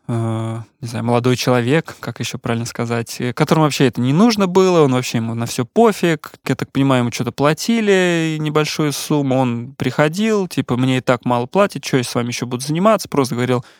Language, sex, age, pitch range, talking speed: Russian, male, 20-39, 120-145 Hz, 195 wpm